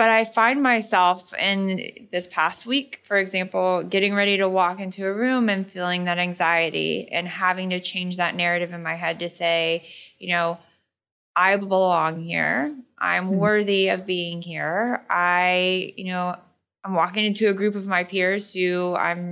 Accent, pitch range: American, 175-195 Hz